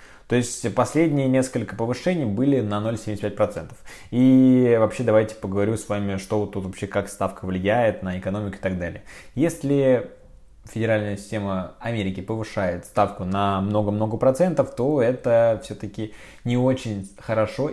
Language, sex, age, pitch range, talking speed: Russian, male, 20-39, 100-120 Hz, 135 wpm